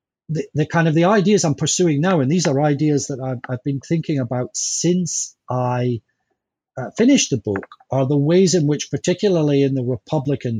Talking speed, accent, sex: 195 wpm, British, male